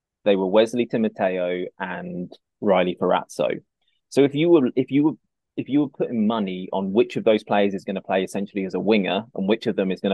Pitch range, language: 95-110 Hz, English